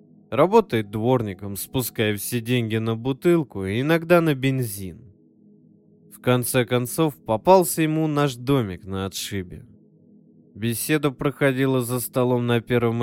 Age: 20-39